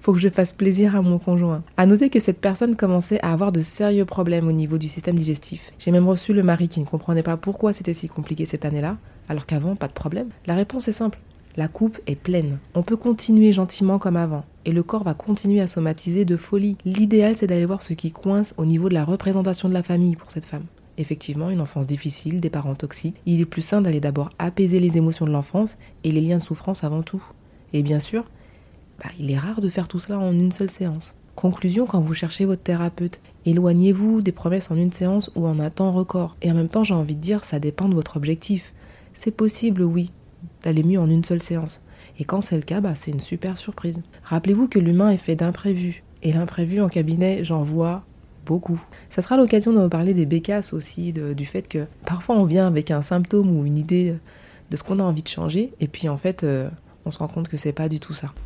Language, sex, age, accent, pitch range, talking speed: French, female, 30-49, French, 160-195 Hz, 235 wpm